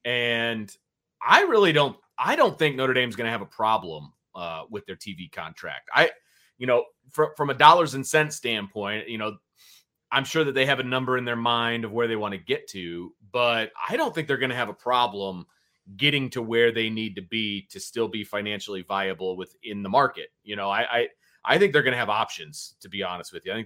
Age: 30-49